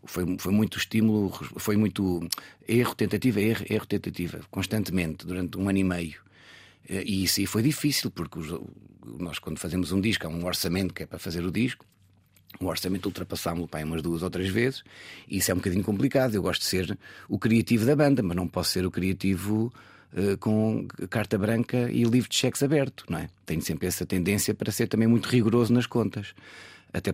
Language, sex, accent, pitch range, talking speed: Portuguese, male, Portuguese, 95-115 Hz, 205 wpm